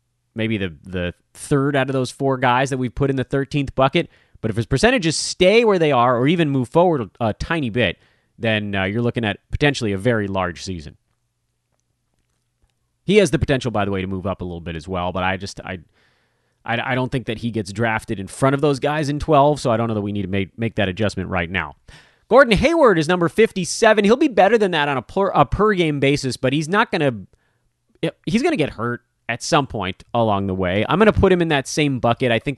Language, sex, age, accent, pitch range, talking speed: English, male, 30-49, American, 115-155 Hz, 245 wpm